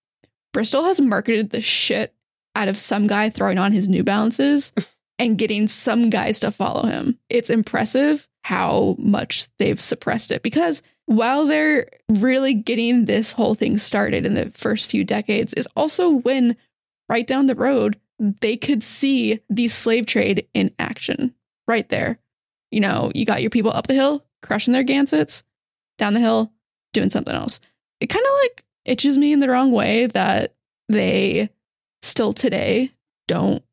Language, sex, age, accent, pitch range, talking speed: English, female, 10-29, American, 215-260 Hz, 165 wpm